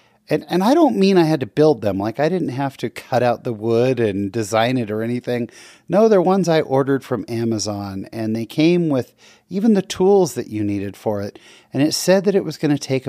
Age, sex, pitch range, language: 40-59, male, 120-175 Hz, English